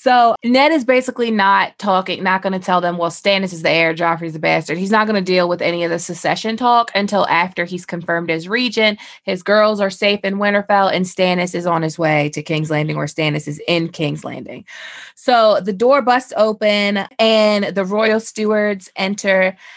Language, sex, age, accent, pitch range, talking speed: English, female, 20-39, American, 175-205 Hz, 205 wpm